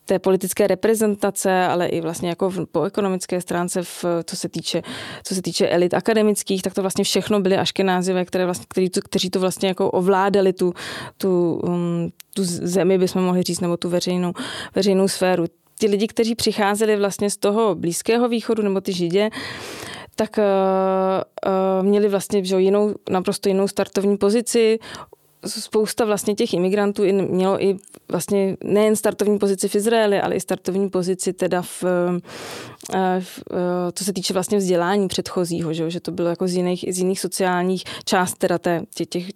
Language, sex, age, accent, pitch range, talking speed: English, female, 20-39, Czech, 180-200 Hz, 165 wpm